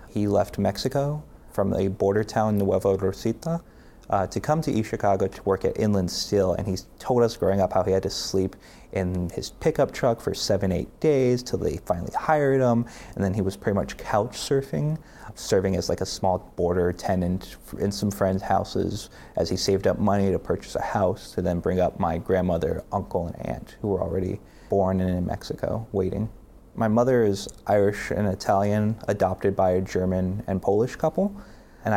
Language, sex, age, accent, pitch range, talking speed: English, male, 30-49, American, 95-105 Hz, 195 wpm